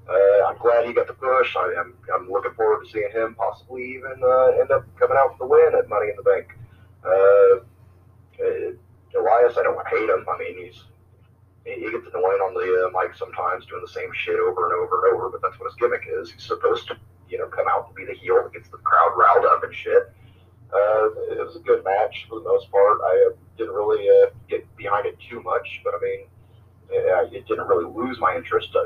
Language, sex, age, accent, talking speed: English, male, 30-49, American, 230 wpm